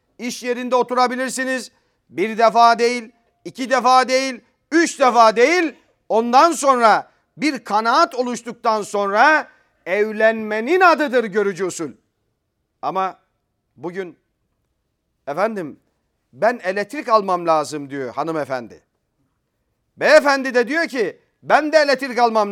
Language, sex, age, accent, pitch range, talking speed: Turkish, male, 40-59, native, 195-265 Hz, 105 wpm